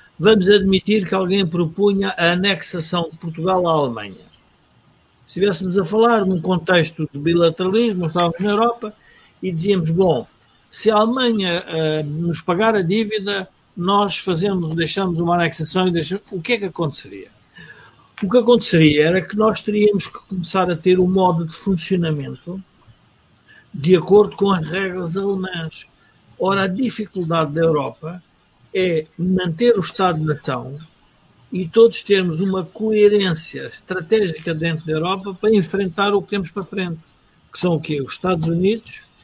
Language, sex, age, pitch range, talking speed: Portuguese, male, 50-69, 165-200 Hz, 150 wpm